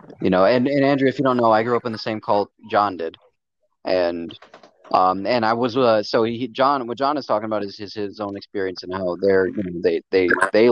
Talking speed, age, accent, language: 250 wpm, 30-49, American, English